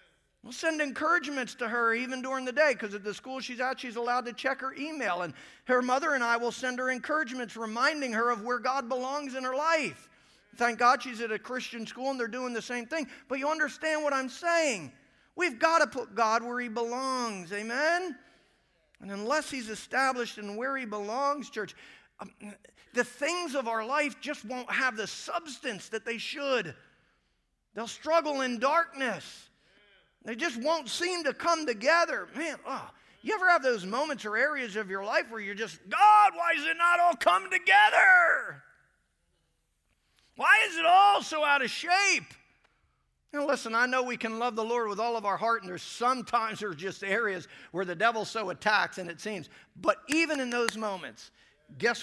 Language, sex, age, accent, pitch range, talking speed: English, male, 50-69, American, 220-295 Hz, 190 wpm